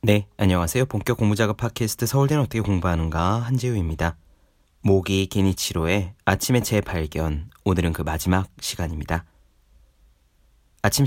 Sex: male